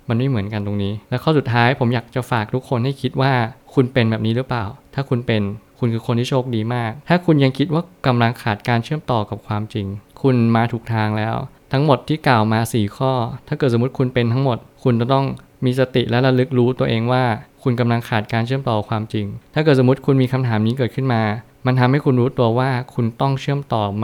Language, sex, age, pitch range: Thai, male, 20-39, 115-135 Hz